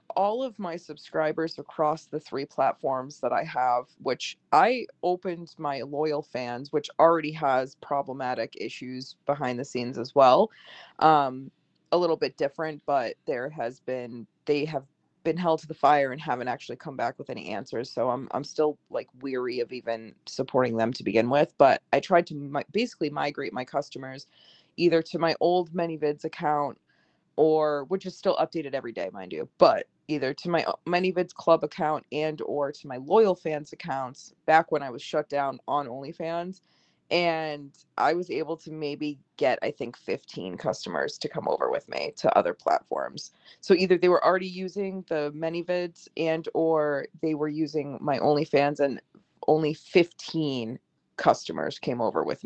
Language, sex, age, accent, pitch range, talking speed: English, female, 20-39, American, 135-165 Hz, 175 wpm